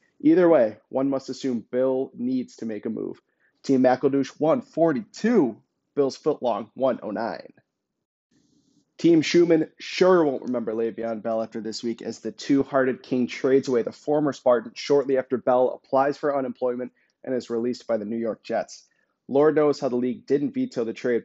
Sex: male